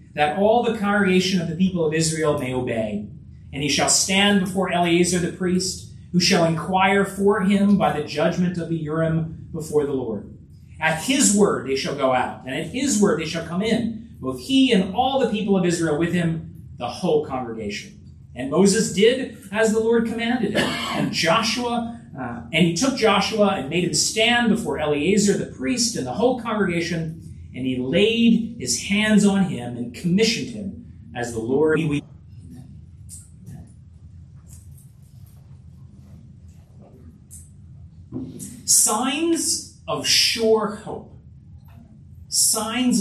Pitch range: 150-220 Hz